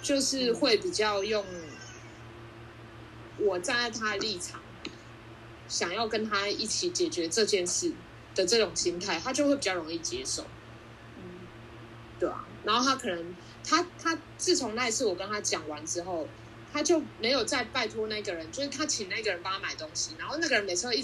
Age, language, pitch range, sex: 20-39, Chinese, 175-285 Hz, female